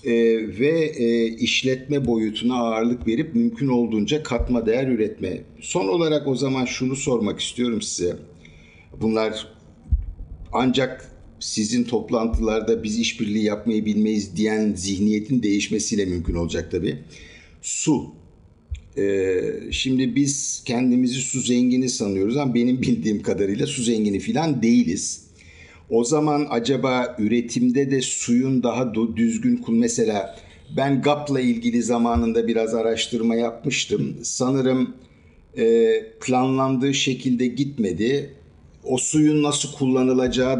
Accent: native